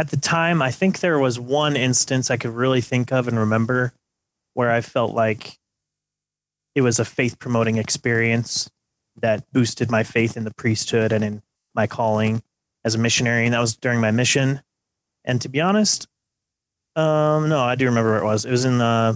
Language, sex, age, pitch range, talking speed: English, male, 30-49, 115-130 Hz, 190 wpm